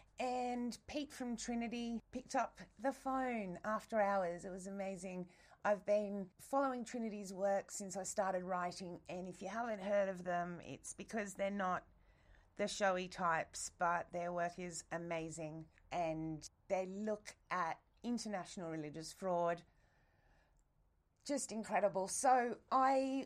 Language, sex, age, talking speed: English, female, 30-49, 135 wpm